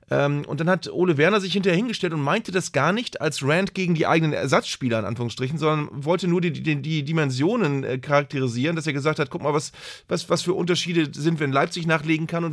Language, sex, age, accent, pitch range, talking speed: German, male, 30-49, German, 150-185 Hz, 230 wpm